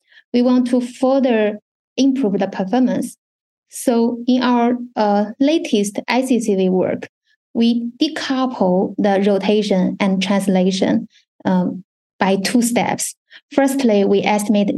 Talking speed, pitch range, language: 110 wpm, 200-250 Hz, English